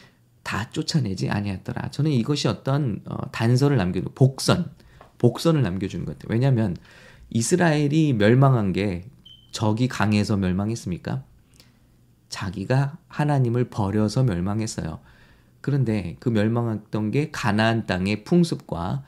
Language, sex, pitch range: English, male, 105-140 Hz